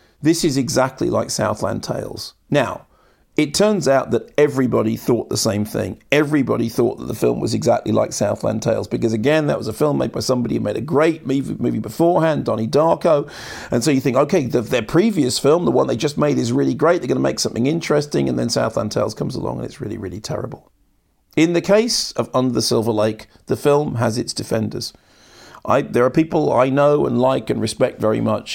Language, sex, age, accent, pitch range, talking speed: English, male, 40-59, British, 110-135 Hz, 210 wpm